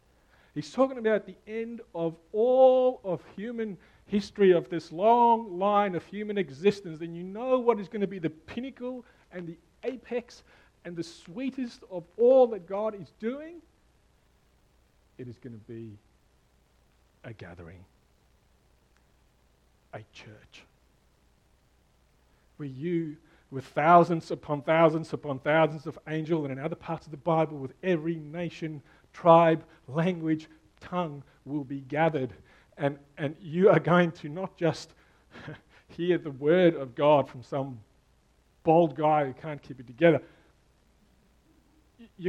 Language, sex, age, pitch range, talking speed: English, male, 40-59, 140-185 Hz, 140 wpm